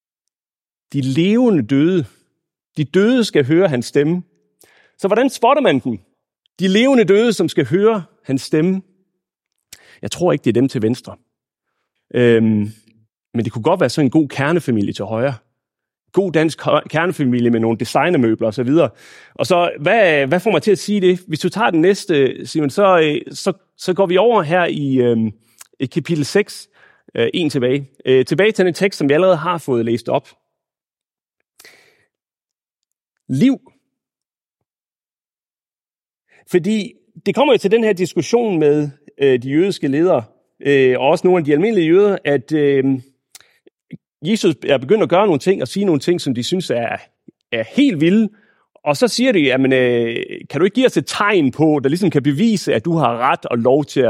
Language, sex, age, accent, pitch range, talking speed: Danish, male, 30-49, native, 130-190 Hz, 175 wpm